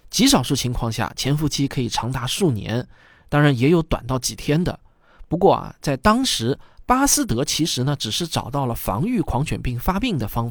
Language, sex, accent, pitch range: Chinese, male, native, 120-170 Hz